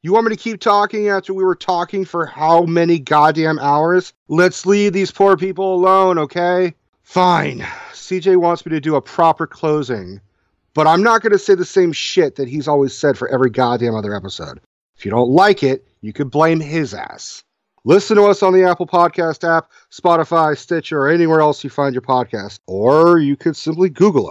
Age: 40-59